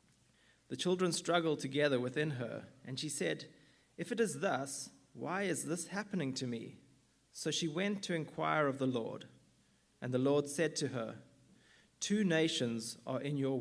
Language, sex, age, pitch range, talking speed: English, male, 30-49, 120-155 Hz, 170 wpm